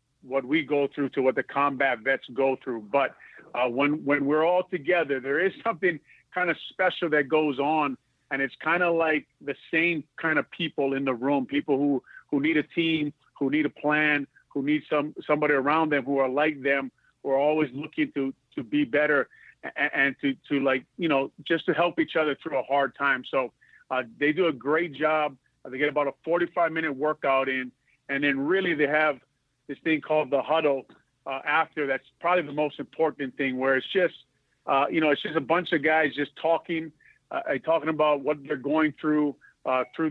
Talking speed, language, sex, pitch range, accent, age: 210 wpm, English, male, 140-160 Hz, American, 40-59